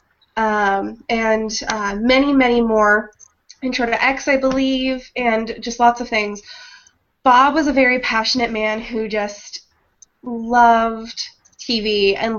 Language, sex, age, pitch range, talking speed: English, female, 20-39, 215-245 Hz, 135 wpm